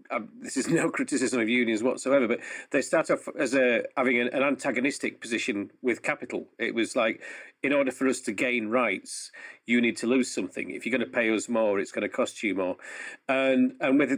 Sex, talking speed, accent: male, 210 wpm, British